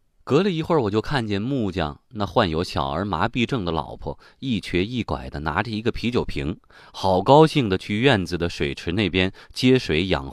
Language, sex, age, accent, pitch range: Chinese, male, 30-49, native, 85-120 Hz